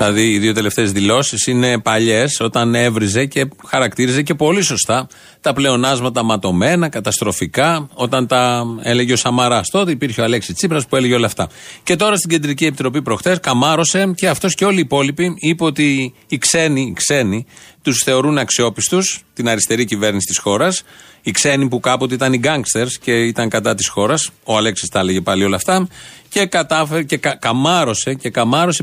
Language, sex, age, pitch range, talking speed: Greek, male, 30-49, 120-175 Hz, 170 wpm